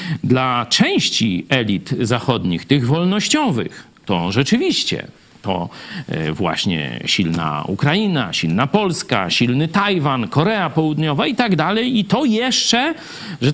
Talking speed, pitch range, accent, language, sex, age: 110 wpm, 150-245 Hz, native, Polish, male, 50-69